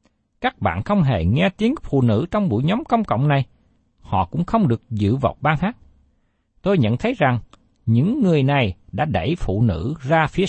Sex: male